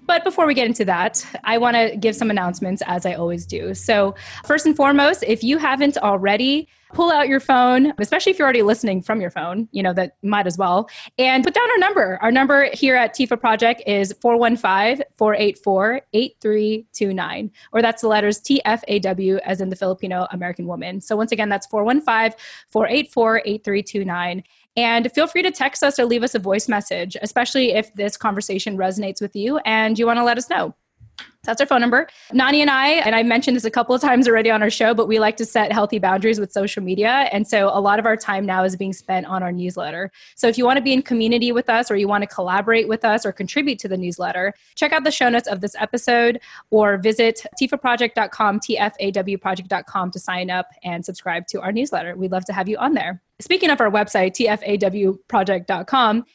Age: 20-39